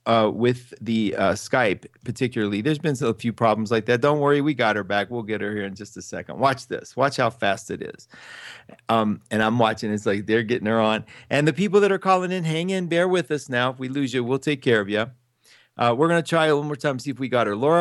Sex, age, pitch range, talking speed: male, 40-59, 115-155 Hz, 275 wpm